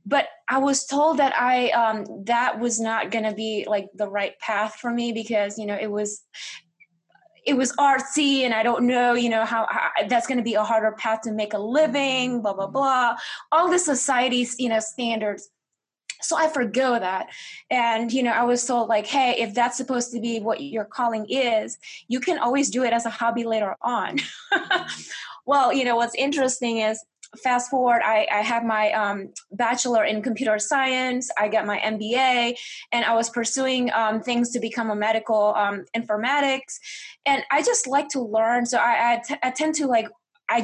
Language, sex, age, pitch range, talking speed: English, female, 20-39, 220-260 Hz, 195 wpm